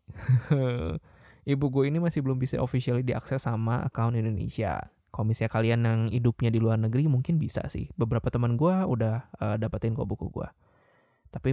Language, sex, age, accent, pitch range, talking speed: Indonesian, male, 20-39, native, 115-140 Hz, 160 wpm